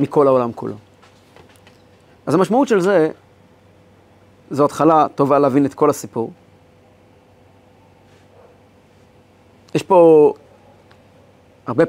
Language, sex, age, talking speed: Hebrew, male, 40-59, 85 wpm